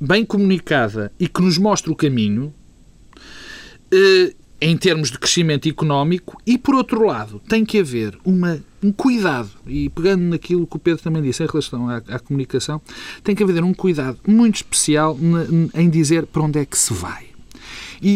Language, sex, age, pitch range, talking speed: Portuguese, male, 40-59, 145-200 Hz, 170 wpm